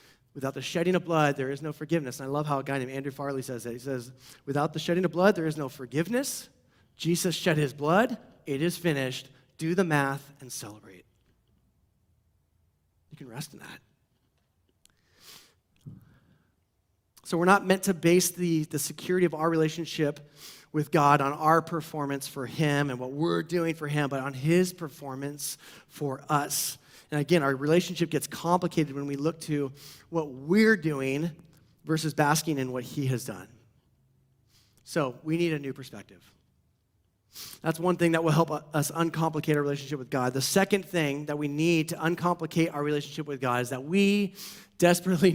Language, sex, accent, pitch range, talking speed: English, male, American, 135-170 Hz, 175 wpm